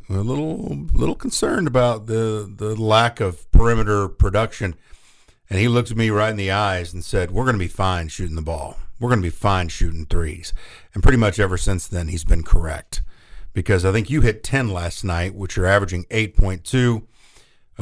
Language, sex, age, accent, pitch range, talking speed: English, male, 50-69, American, 90-115 Hz, 195 wpm